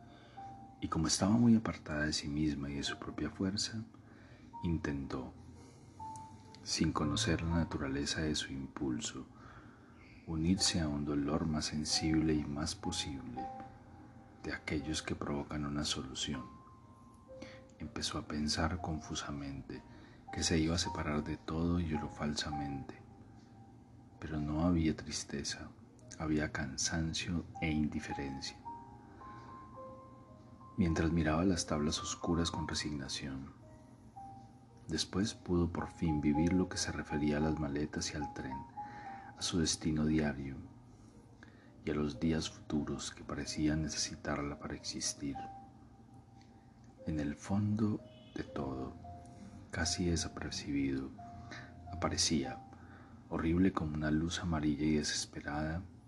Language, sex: Spanish, male